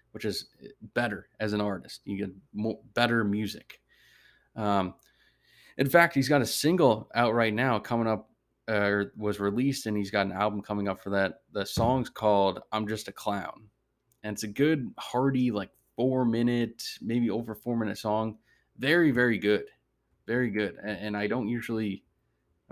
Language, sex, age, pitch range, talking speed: English, male, 20-39, 105-120 Hz, 165 wpm